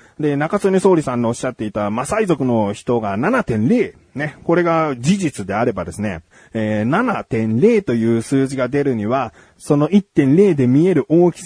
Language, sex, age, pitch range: Japanese, male, 30-49, 115-165 Hz